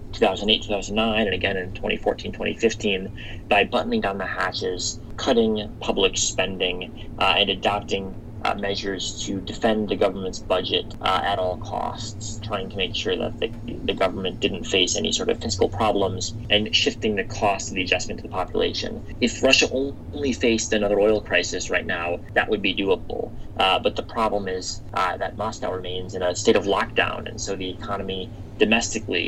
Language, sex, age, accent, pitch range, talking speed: Portuguese, male, 30-49, American, 95-110 Hz, 175 wpm